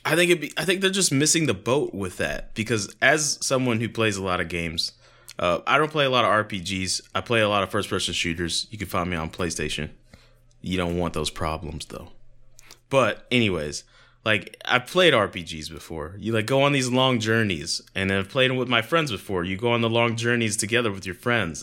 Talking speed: 230 wpm